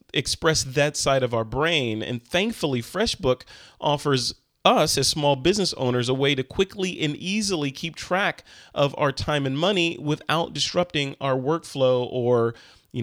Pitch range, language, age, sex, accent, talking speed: 130-170 Hz, English, 30-49, male, American, 155 wpm